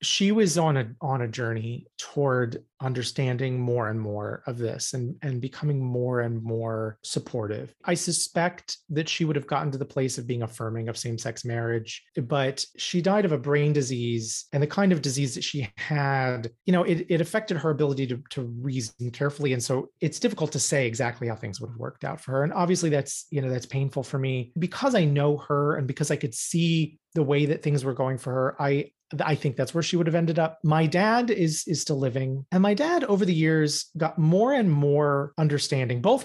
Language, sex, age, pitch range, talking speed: English, male, 30-49, 130-160 Hz, 220 wpm